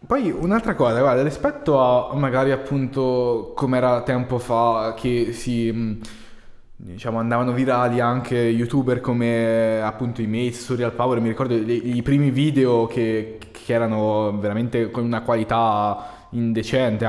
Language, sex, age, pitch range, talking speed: Italian, male, 20-39, 120-145 Hz, 135 wpm